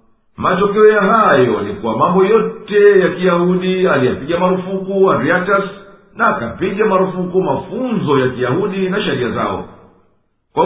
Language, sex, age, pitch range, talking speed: Swahili, male, 50-69, 150-195 Hz, 120 wpm